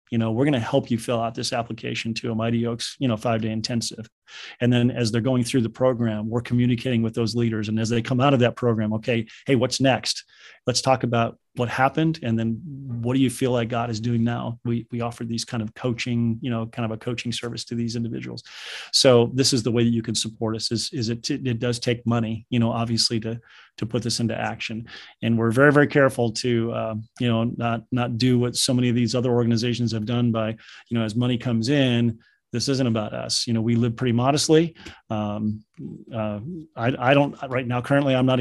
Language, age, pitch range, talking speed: English, 30-49, 115-125 Hz, 235 wpm